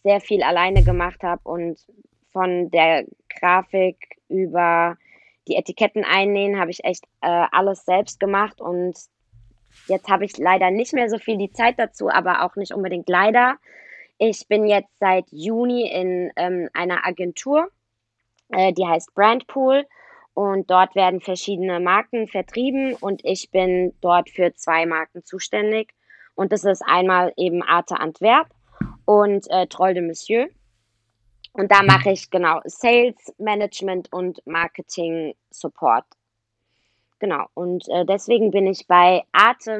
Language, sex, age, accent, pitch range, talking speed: German, female, 20-39, German, 180-210 Hz, 140 wpm